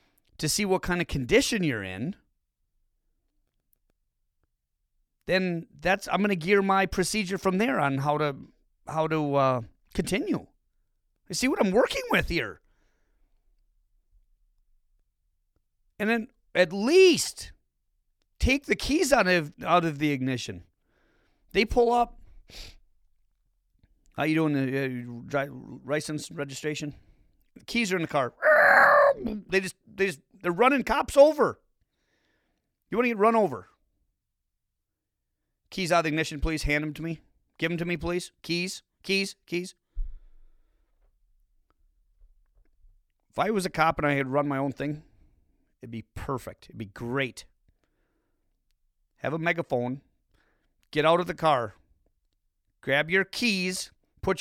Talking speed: 130 wpm